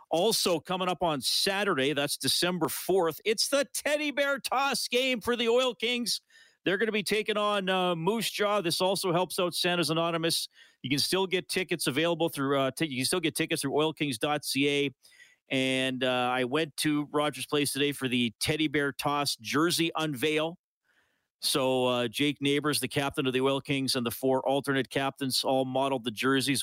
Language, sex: English, male